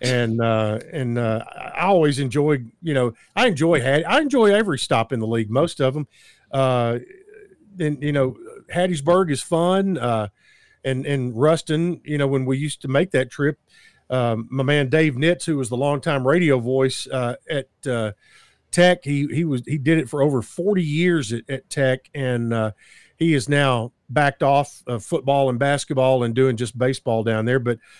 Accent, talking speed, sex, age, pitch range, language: American, 185 wpm, male, 50-69, 125-155 Hz, English